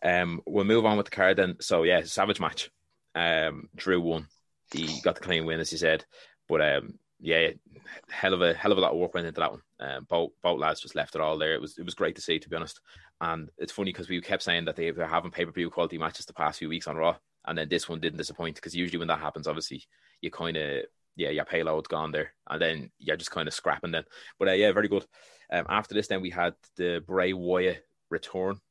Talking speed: 255 wpm